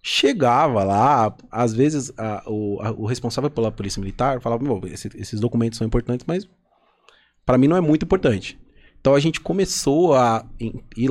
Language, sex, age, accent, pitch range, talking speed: Portuguese, male, 20-39, Brazilian, 105-125 Hz, 165 wpm